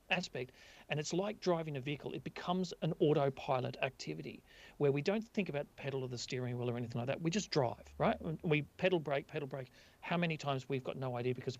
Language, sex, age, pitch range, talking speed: English, male, 40-59, 130-175 Hz, 220 wpm